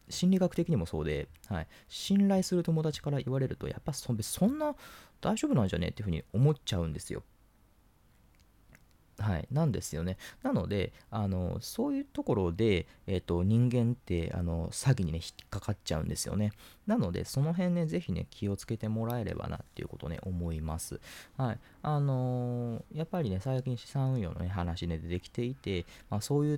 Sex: male